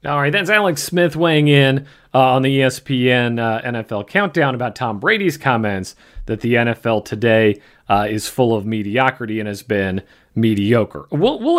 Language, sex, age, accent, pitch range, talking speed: English, male, 40-59, American, 110-140 Hz, 170 wpm